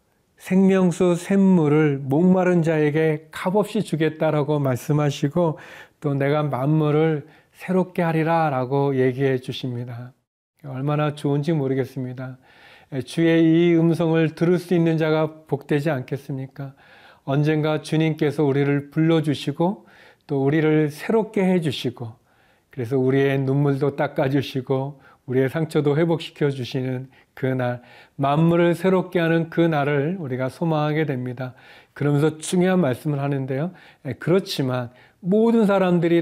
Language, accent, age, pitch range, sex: Korean, native, 40-59, 135-165 Hz, male